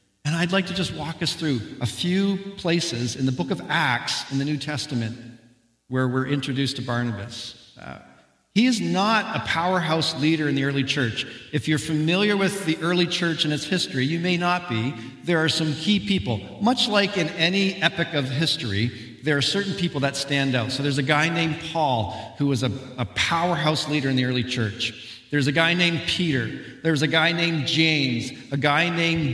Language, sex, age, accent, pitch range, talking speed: English, male, 50-69, American, 115-170 Hz, 200 wpm